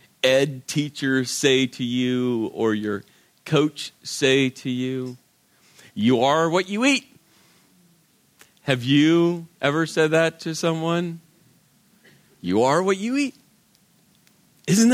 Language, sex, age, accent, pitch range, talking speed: English, male, 40-59, American, 135-200 Hz, 115 wpm